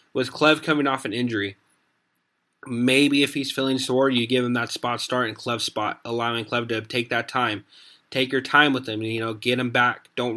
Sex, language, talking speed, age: male, English, 215 wpm, 20-39